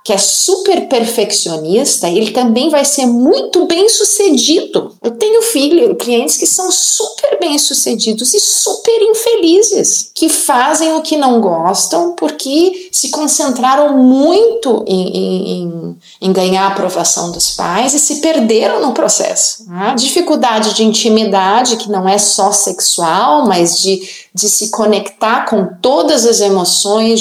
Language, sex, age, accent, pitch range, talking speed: Portuguese, female, 40-59, Brazilian, 175-270 Hz, 135 wpm